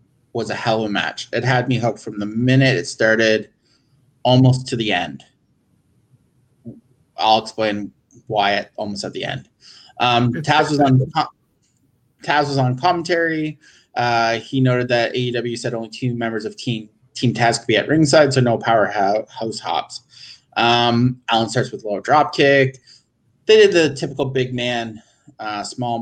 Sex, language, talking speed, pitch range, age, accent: male, English, 165 wpm, 115-135 Hz, 30-49, American